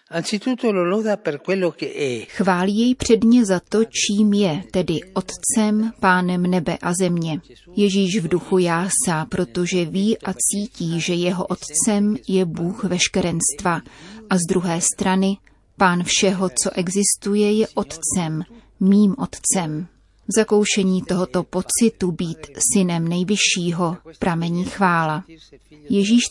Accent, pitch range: native, 175-205 Hz